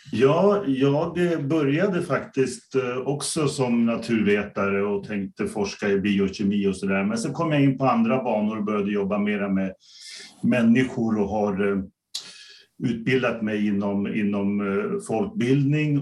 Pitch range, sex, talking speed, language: 105-140 Hz, male, 130 wpm, Swedish